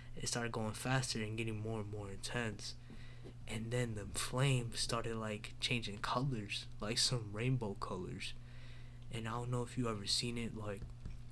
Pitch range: 110-120 Hz